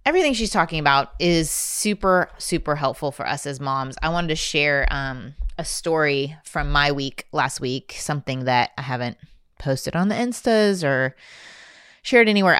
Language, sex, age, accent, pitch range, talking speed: English, female, 20-39, American, 135-175 Hz, 165 wpm